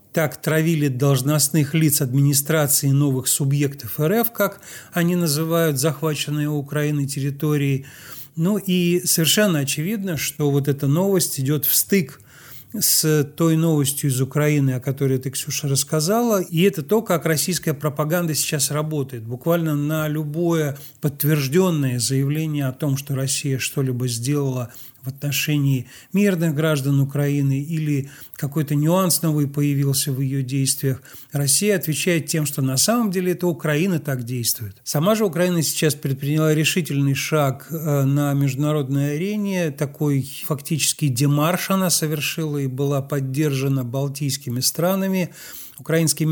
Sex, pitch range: male, 140-160 Hz